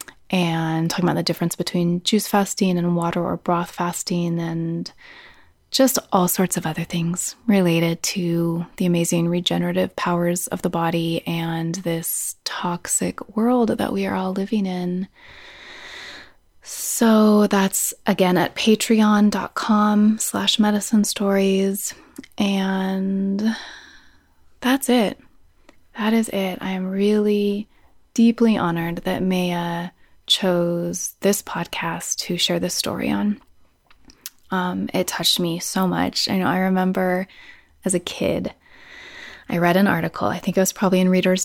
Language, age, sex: English, 20-39, female